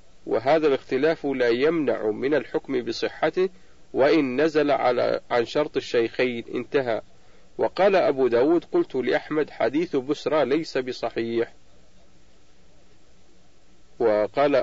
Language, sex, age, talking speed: Arabic, male, 40-59, 100 wpm